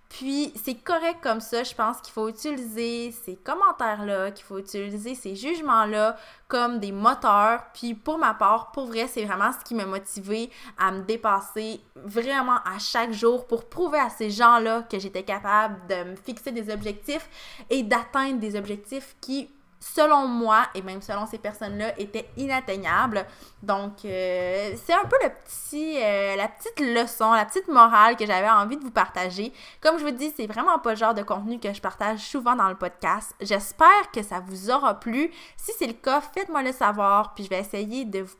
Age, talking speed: 20-39, 190 wpm